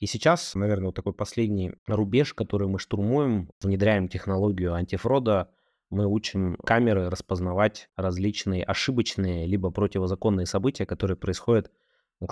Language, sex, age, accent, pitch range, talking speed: Russian, male, 20-39, native, 90-110 Hz, 120 wpm